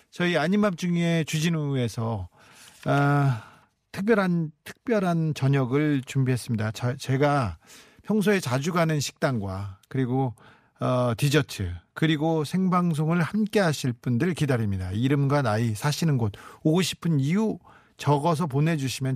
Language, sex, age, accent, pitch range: Korean, male, 40-59, native, 125-185 Hz